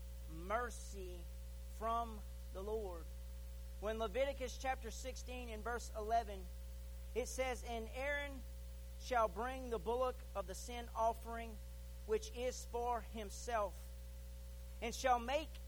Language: English